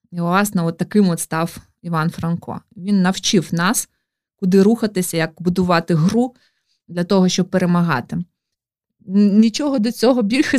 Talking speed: 135 wpm